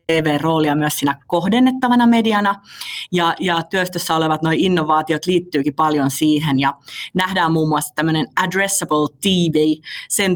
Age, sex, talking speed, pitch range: 30-49, female, 125 wpm, 150-175 Hz